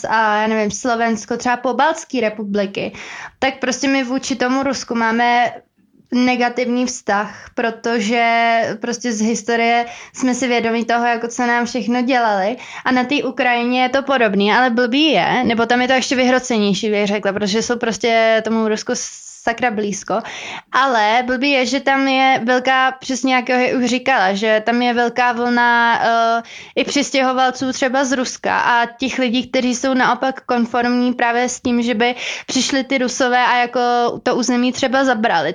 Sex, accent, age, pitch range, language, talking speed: female, native, 20-39, 225-255 Hz, Czech, 165 wpm